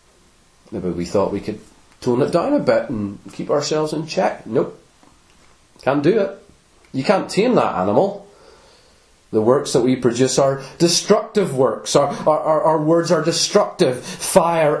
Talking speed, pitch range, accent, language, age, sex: 160 wpm, 115-155 Hz, British, English, 30-49, male